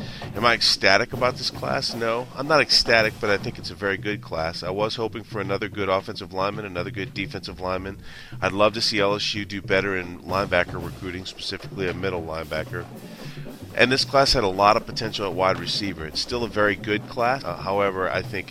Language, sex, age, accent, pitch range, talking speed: English, male, 30-49, American, 95-115 Hz, 210 wpm